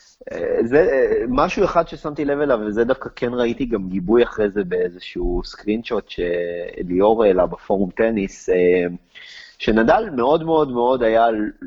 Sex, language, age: male, Hebrew, 30-49